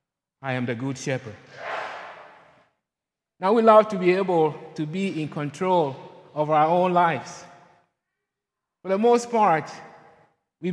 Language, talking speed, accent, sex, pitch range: English, 135 wpm, Nigerian, male, 155-185 Hz